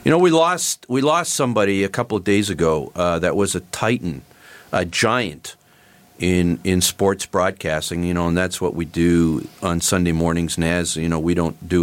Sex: male